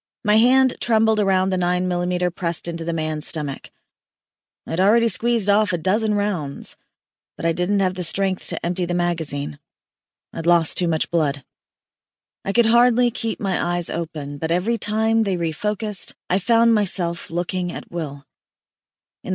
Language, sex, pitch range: English, female, 170-210 Hz